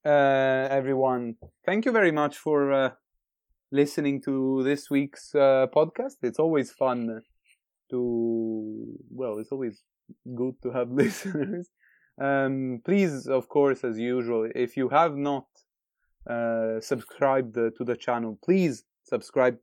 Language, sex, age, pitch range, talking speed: English, male, 20-39, 120-150 Hz, 130 wpm